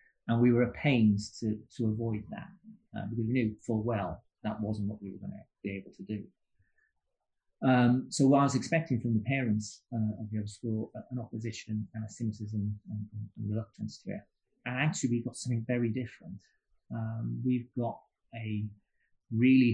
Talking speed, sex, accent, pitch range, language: 200 wpm, male, British, 110-125 Hz, English